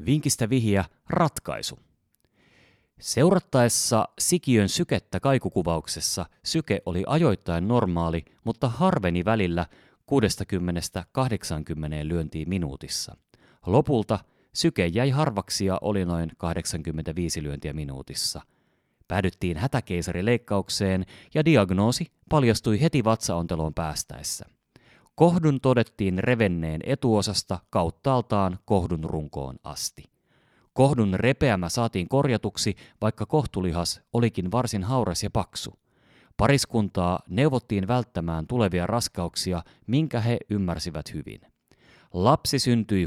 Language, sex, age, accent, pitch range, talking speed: Finnish, male, 30-49, native, 90-125 Hz, 90 wpm